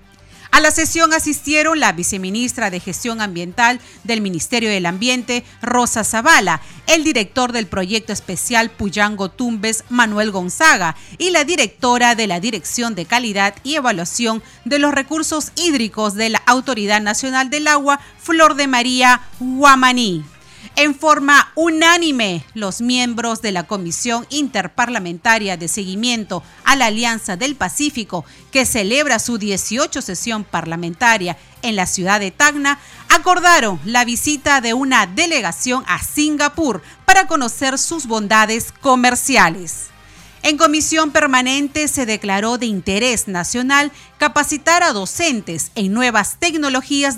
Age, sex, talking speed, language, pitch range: 40-59, female, 130 wpm, Spanish, 210-290 Hz